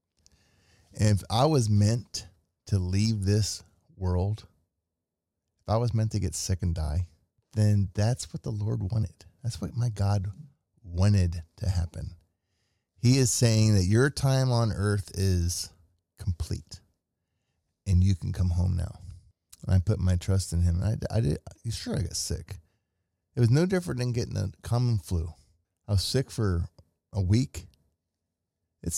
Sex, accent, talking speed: male, American, 160 wpm